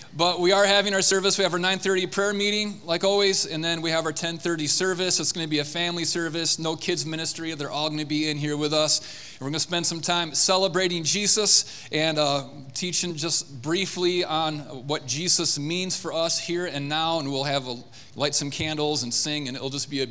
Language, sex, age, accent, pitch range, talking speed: English, male, 30-49, American, 135-170 Hz, 235 wpm